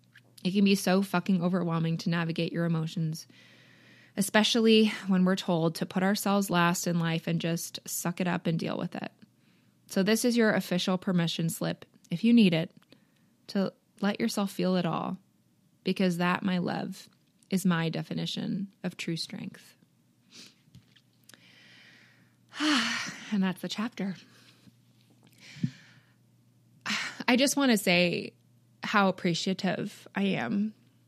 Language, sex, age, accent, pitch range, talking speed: English, female, 20-39, American, 170-205 Hz, 135 wpm